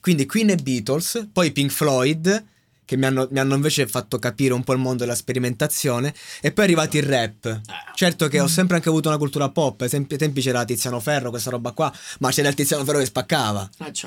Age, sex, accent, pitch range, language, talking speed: 20-39, male, native, 115-145 Hz, Italian, 210 wpm